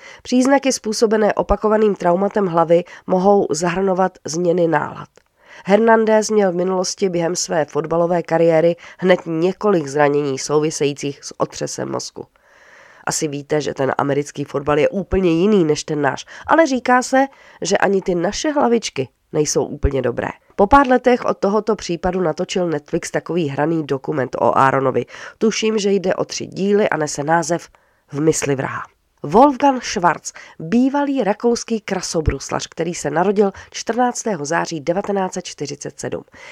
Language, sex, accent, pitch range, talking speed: Czech, female, native, 165-230 Hz, 135 wpm